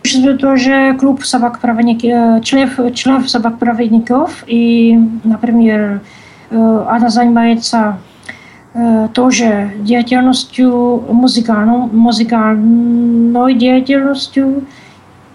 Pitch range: 225-250 Hz